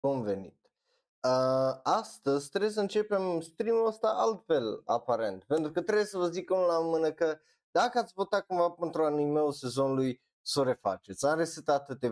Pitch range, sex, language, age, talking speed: 130-185 Hz, male, Romanian, 20-39, 160 wpm